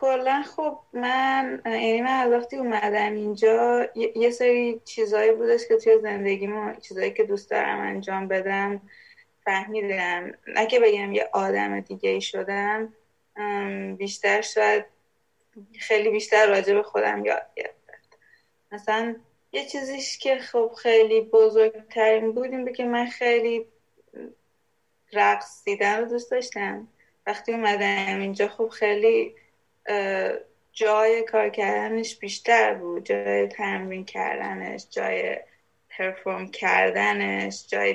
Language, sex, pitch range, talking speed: Persian, female, 200-245 Hz, 115 wpm